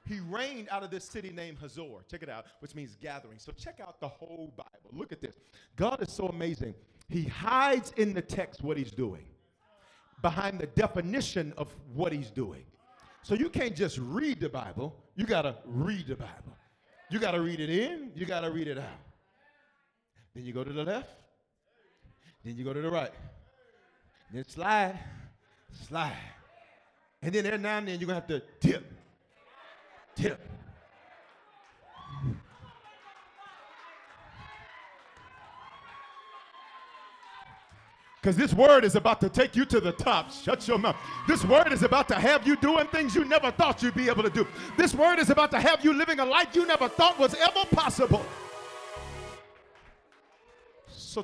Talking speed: 160 wpm